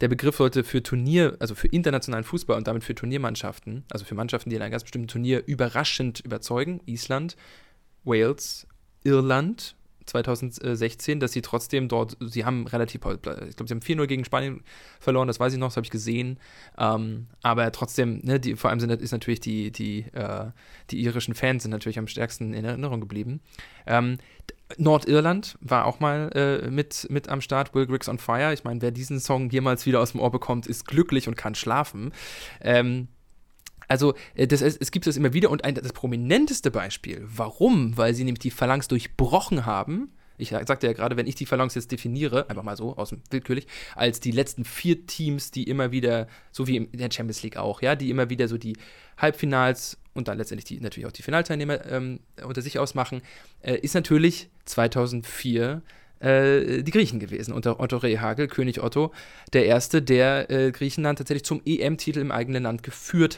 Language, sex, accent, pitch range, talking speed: English, male, German, 115-140 Hz, 190 wpm